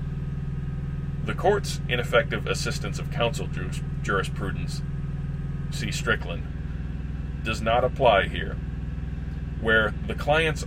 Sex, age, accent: male, 30-49, American